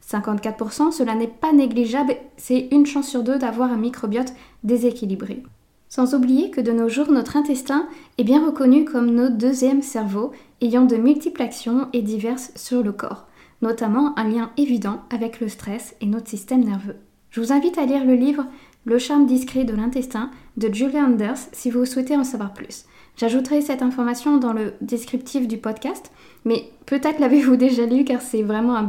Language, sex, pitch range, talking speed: French, female, 220-270 Hz, 180 wpm